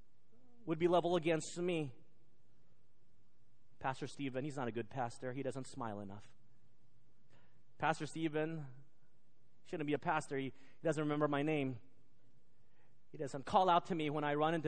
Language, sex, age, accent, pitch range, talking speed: English, male, 30-49, American, 120-160 Hz, 155 wpm